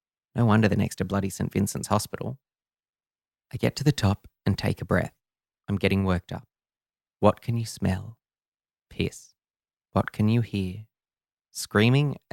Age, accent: 20-39, Australian